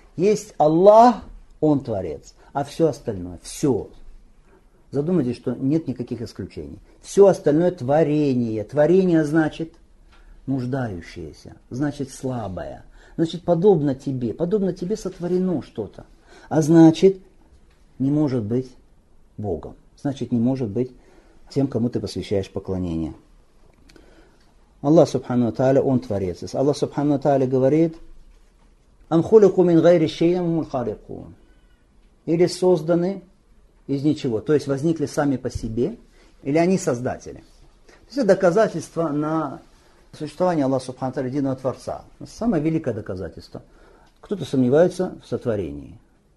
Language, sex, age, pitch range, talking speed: Russian, male, 50-69, 120-165 Hz, 105 wpm